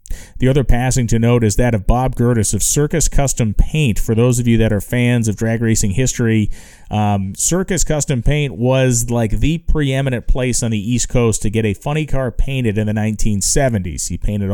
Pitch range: 100-120 Hz